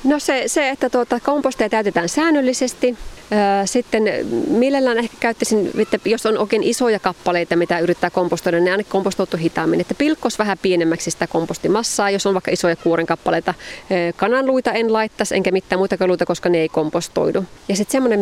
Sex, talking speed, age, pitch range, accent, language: female, 160 wpm, 30-49, 175-225 Hz, native, Finnish